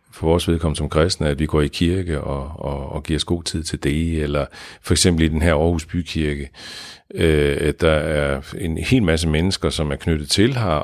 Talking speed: 220 wpm